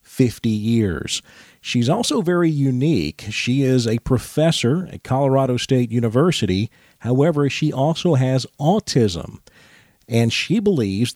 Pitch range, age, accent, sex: 110-140 Hz, 40-59, American, male